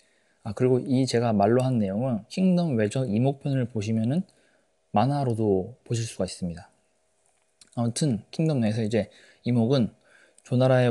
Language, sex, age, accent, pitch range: Korean, male, 20-39, native, 110-145 Hz